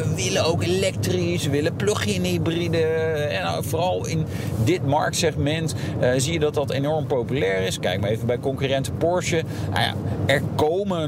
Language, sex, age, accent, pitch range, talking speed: Dutch, male, 40-59, Dutch, 120-155 Hz, 175 wpm